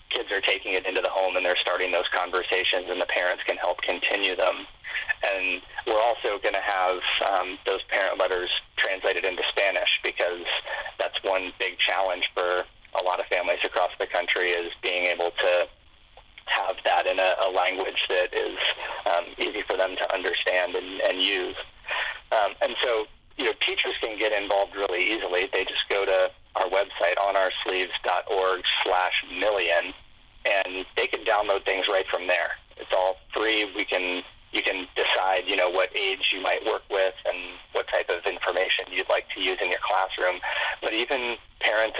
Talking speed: 175 wpm